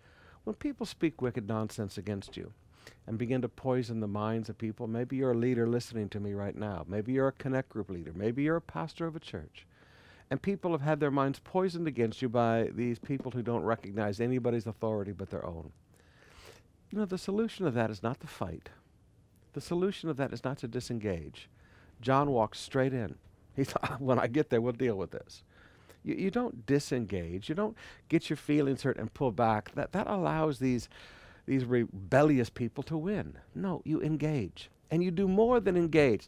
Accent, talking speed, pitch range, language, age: American, 200 wpm, 105-150 Hz, English, 60-79